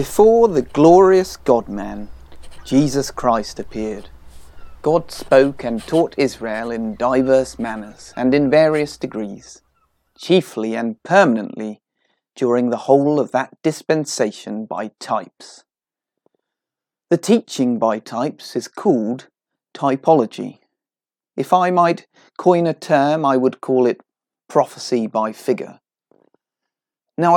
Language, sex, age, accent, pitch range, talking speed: English, male, 30-49, British, 115-160 Hz, 110 wpm